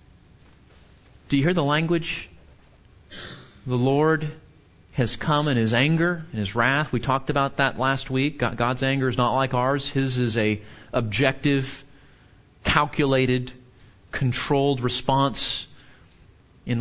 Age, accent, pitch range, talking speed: 40-59, American, 125-145 Hz, 125 wpm